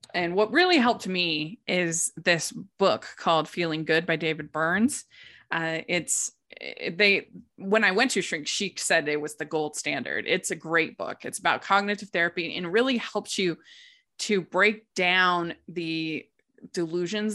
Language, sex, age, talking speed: English, female, 20-39, 160 wpm